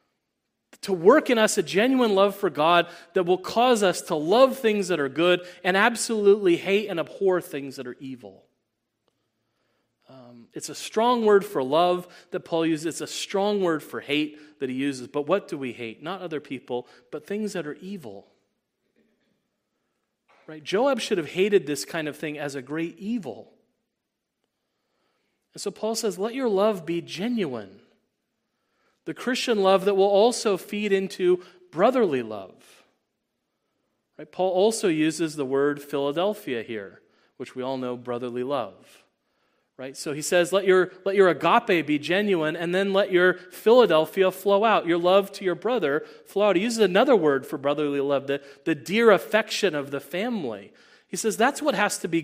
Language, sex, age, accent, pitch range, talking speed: English, male, 30-49, American, 150-205 Hz, 170 wpm